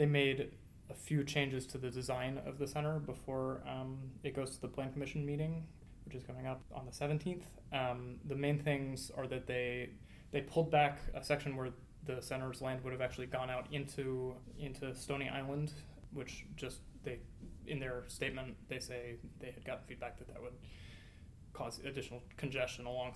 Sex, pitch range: male, 125-140 Hz